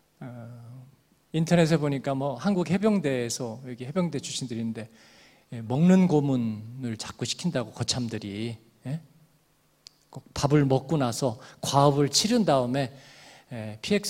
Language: Korean